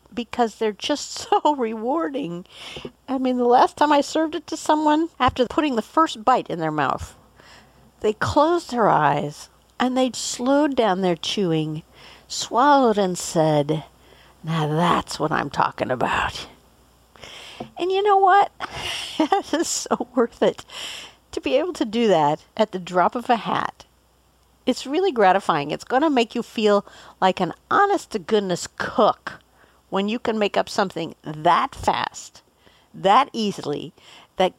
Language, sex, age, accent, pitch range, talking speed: English, female, 50-69, American, 185-280 Hz, 150 wpm